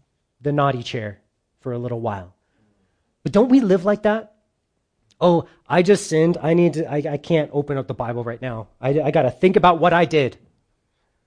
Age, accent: 30-49, American